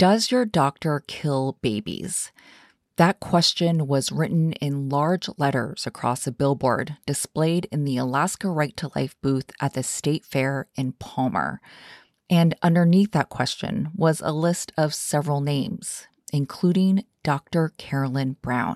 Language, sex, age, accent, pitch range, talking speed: English, female, 30-49, American, 135-170 Hz, 140 wpm